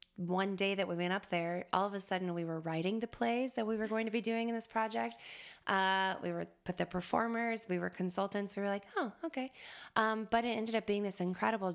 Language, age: English, 20-39